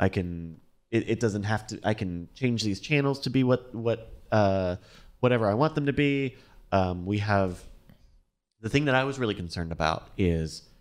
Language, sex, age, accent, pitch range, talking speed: English, male, 30-49, American, 90-115 Hz, 195 wpm